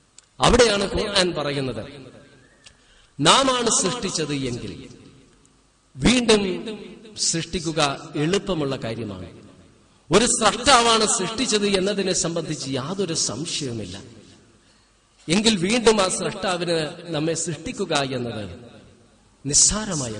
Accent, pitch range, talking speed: native, 145-220 Hz, 70 wpm